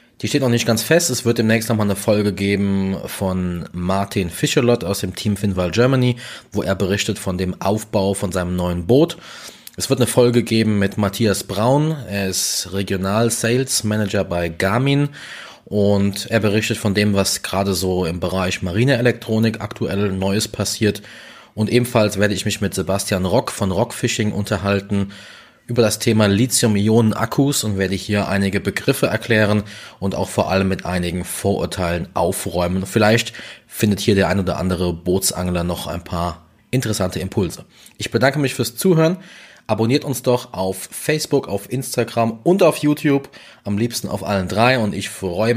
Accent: German